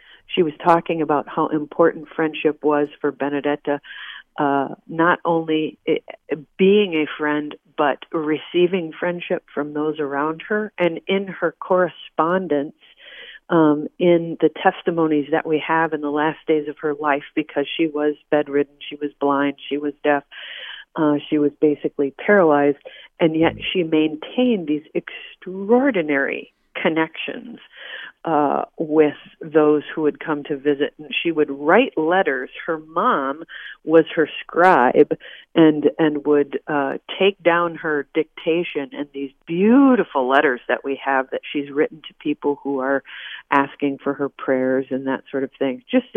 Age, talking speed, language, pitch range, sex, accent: 50-69, 145 wpm, English, 145-165 Hz, female, American